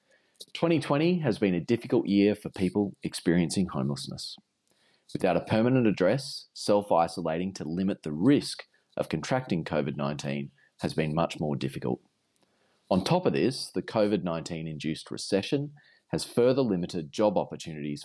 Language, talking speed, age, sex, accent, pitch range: English, 130 wpm, 30-49, male, Australian, 75-100 Hz